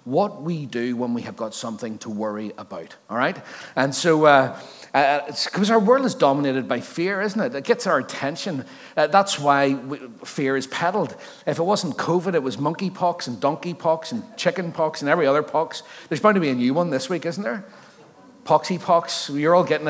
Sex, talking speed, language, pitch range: male, 215 wpm, English, 130-185 Hz